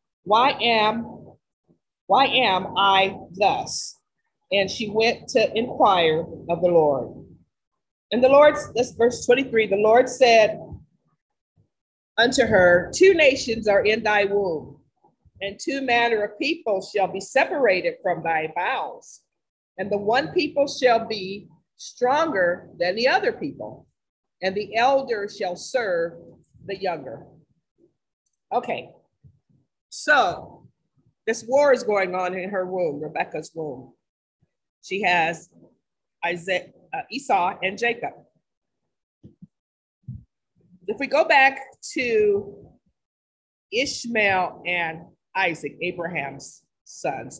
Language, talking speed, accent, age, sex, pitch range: English, 115 wpm, American, 40-59, female, 175-255 Hz